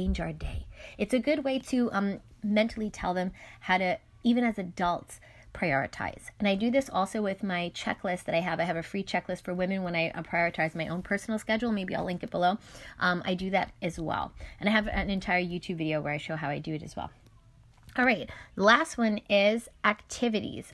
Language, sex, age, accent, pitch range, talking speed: English, female, 20-39, American, 175-220 Hz, 215 wpm